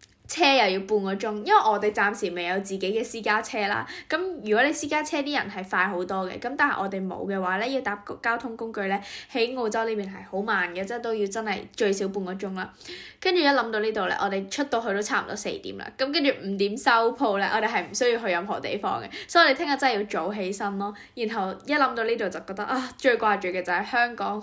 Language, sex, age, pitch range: Chinese, female, 10-29, 200-285 Hz